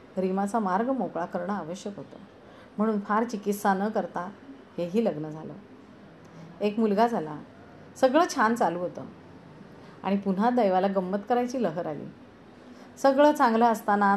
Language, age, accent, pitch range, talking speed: Marathi, 30-49, native, 180-230 Hz, 130 wpm